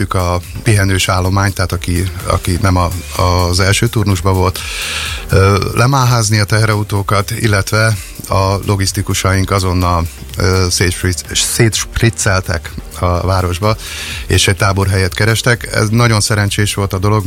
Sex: male